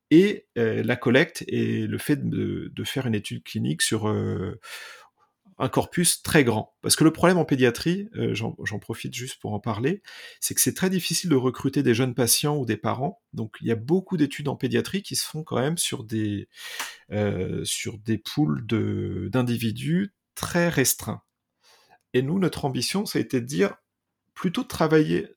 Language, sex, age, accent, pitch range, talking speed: French, male, 40-59, French, 110-155 Hz, 190 wpm